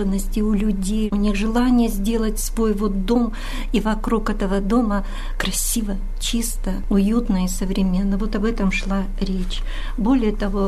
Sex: female